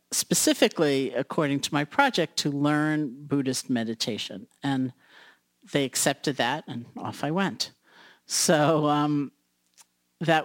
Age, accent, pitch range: 50-69, American, 135-165 Hz